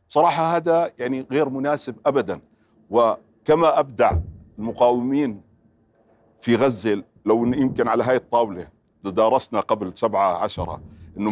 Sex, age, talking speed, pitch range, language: male, 50-69, 115 wpm, 125-170 Hz, Arabic